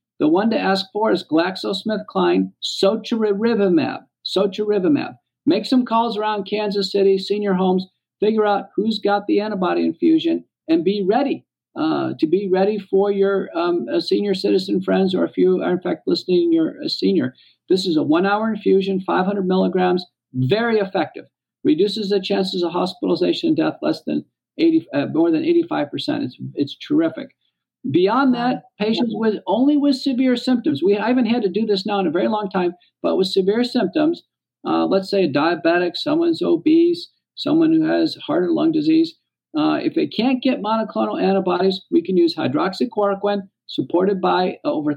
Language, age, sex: English, 50-69, male